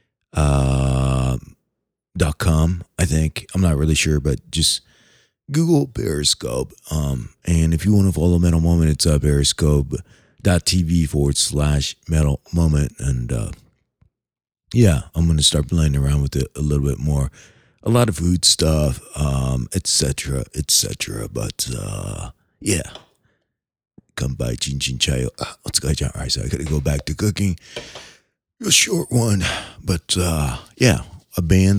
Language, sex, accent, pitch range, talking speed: English, male, American, 70-95 Hz, 150 wpm